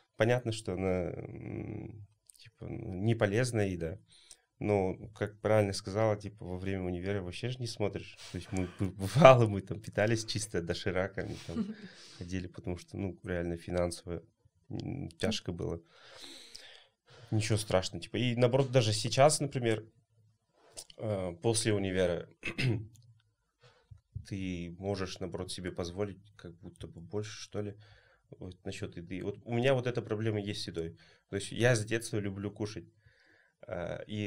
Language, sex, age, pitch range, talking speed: Russian, male, 30-49, 95-120 Hz, 140 wpm